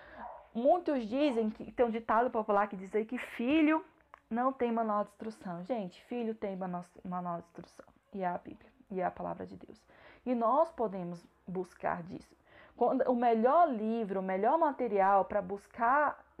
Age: 20-39